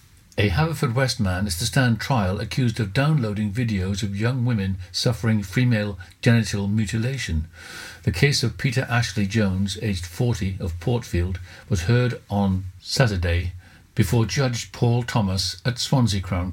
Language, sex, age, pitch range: English, male, 50-69, 95-120 Hz